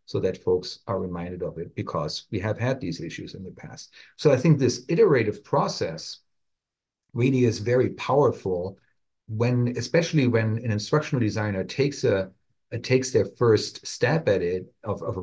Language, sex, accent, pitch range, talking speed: English, male, German, 95-120 Hz, 170 wpm